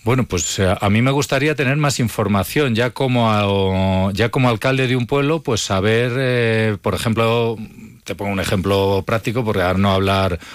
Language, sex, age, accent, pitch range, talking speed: Spanish, male, 40-59, Spanish, 95-115 Hz, 180 wpm